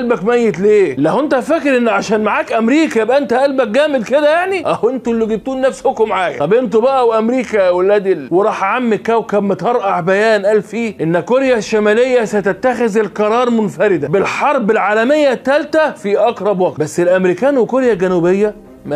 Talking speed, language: 160 wpm, Arabic